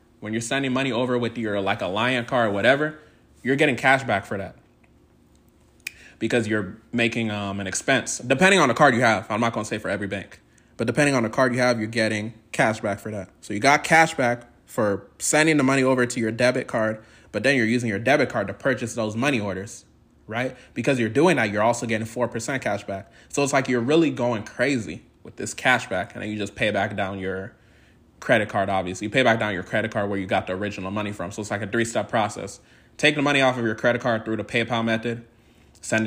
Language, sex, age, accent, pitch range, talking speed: English, male, 20-39, American, 105-125 Hz, 240 wpm